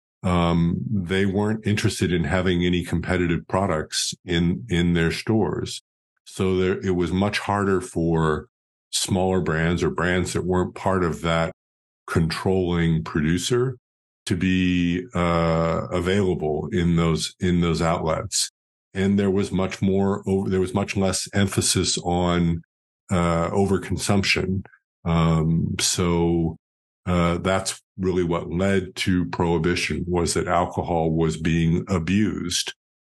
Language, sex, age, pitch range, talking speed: English, male, 50-69, 85-95 Hz, 125 wpm